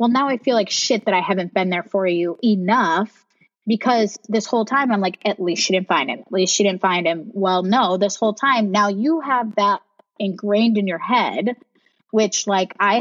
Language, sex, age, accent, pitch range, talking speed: English, female, 20-39, American, 180-220 Hz, 220 wpm